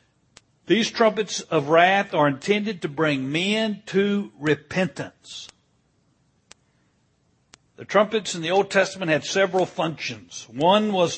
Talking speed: 120 wpm